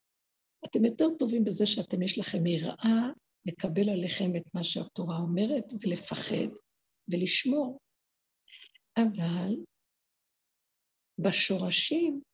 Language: Hebrew